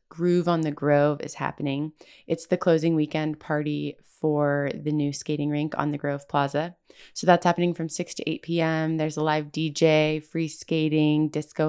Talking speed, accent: 180 wpm, American